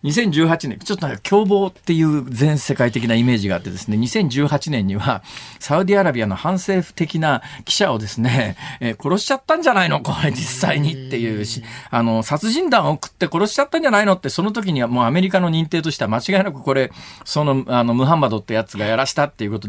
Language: Japanese